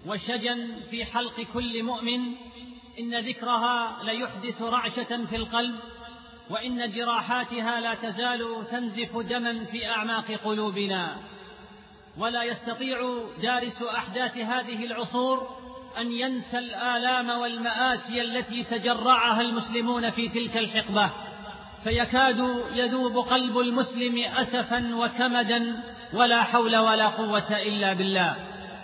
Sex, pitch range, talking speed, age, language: male, 235-255 Hz, 100 wpm, 40-59, Arabic